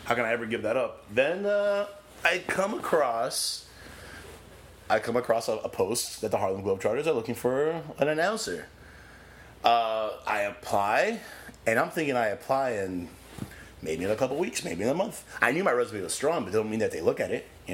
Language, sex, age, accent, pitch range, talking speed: English, male, 30-49, American, 100-120 Hz, 210 wpm